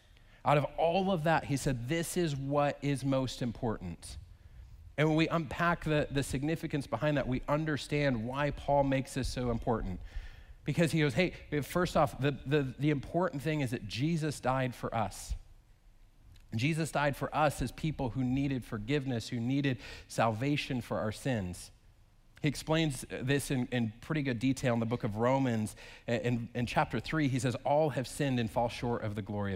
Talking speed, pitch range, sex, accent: 185 wpm, 105-140 Hz, male, American